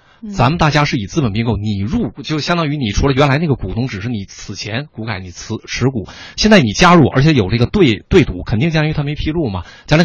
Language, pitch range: Chinese, 105-150 Hz